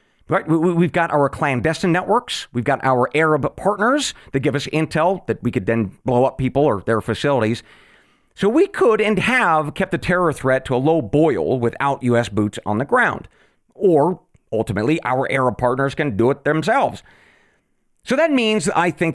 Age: 40-59